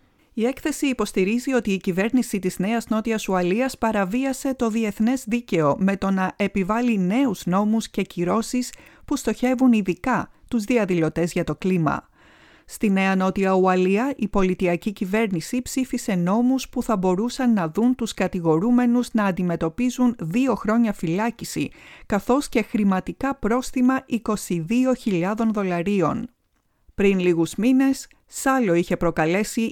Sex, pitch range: female, 180-240 Hz